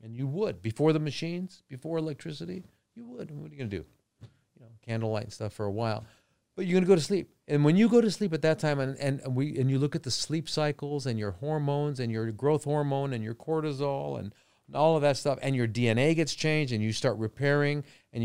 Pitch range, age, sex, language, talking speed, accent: 115-150 Hz, 40-59, male, English, 255 wpm, American